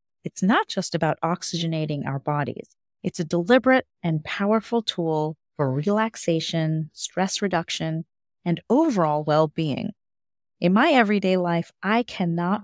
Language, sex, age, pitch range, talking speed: English, female, 30-49, 155-205 Hz, 125 wpm